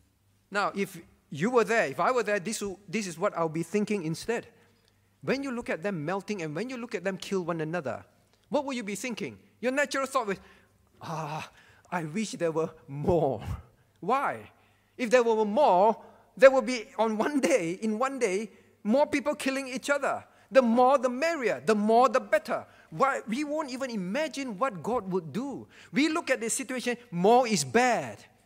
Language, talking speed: English, 195 wpm